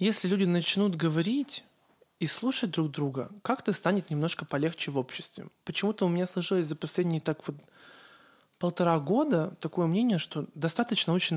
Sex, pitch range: male, 155-200 Hz